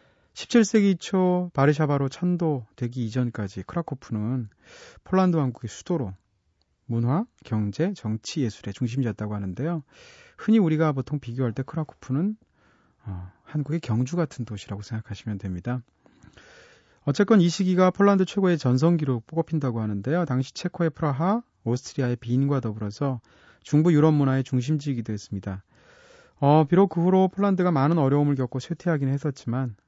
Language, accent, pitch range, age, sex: Korean, native, 115-165 Hz, 30-49, male